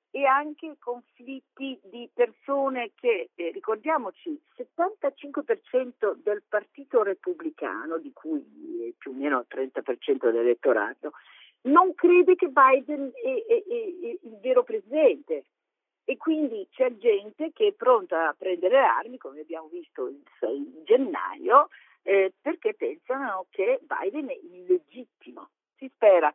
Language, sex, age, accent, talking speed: Italian, female, 50-69, native, 125 wpm